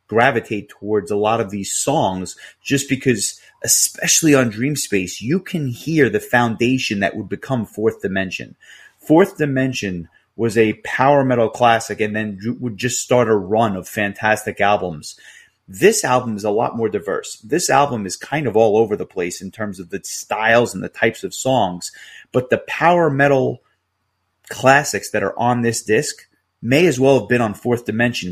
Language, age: English, 30-49